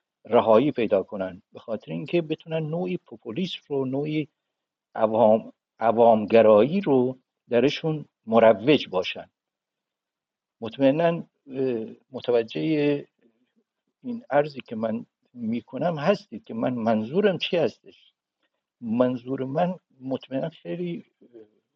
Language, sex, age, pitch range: Persian, male, 60-79, 120-180 Hz